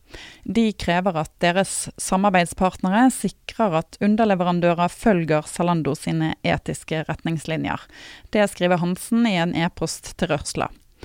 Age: 30-49